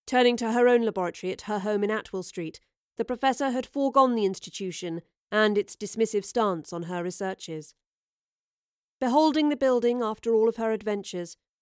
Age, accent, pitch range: 40-59, British, 195-235 Hz